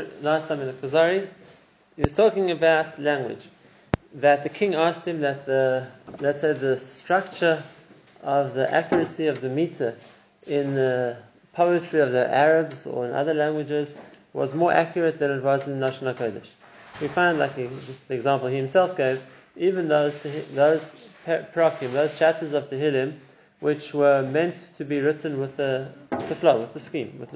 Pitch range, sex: 135-160 Hz, male